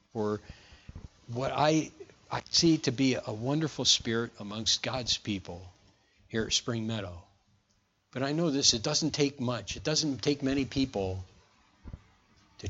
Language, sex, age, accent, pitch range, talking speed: English, male, 50-69, American, 100-140 Hz, 145 wpm